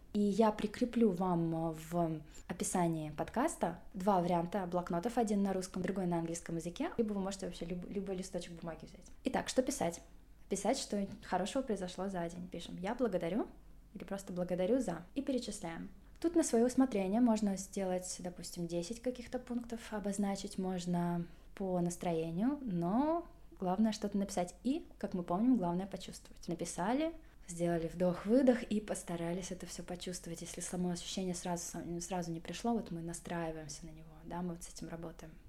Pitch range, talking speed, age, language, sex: 175-220 Hz, 155 wpm, 20-39, Russian, female